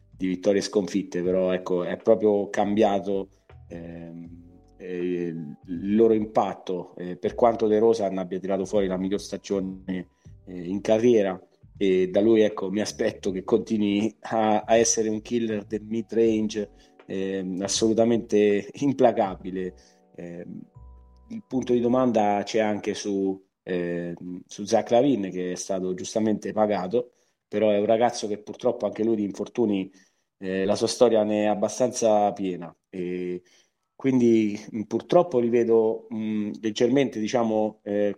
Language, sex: Italian, male